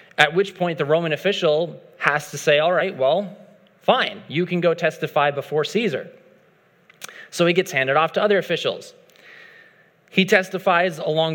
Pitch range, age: 150-195 Hz, 30-49